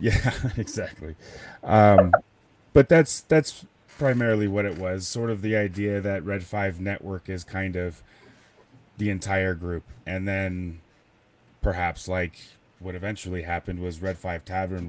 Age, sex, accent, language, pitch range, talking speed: 30-49, male, American, English, 90-105 Hz, 140 wpm